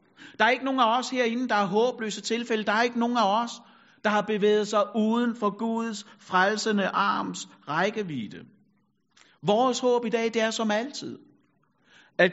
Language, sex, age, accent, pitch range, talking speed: Danish, male, 60-79, native, 205-245 Hz, 175 wpm